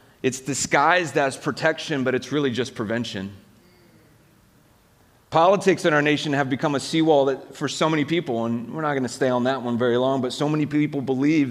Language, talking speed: English, 200 wpm